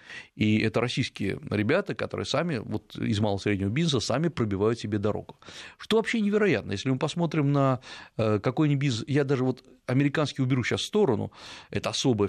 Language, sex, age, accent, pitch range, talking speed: Russian, male, 40-59, native, 110-145 Hz, 160 wpm